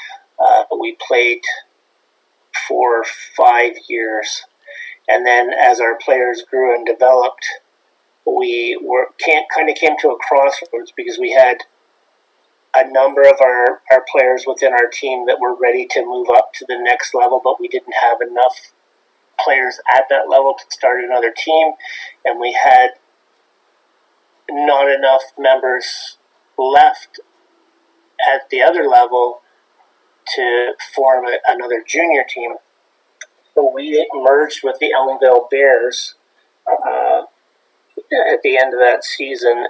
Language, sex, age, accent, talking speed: English, male, 30-49, American, 130 wpm